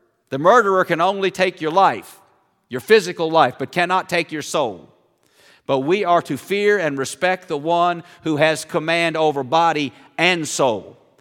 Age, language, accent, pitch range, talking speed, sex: 50-69, English, American, 135-180 Hz, 165 wpm, male